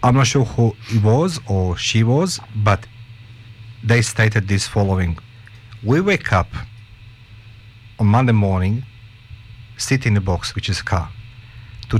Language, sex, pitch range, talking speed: English, male, 100-115 Hz, 145 wpm